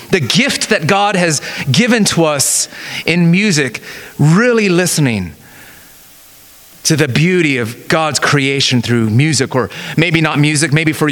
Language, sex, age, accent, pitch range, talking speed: English, male, 30-49, American, 155-230 Hz, 140 wpm